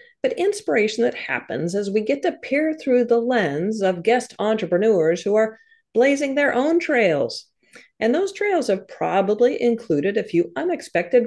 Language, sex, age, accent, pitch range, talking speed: English, female, 40-59, American, 195-330 Hz, 160 wpm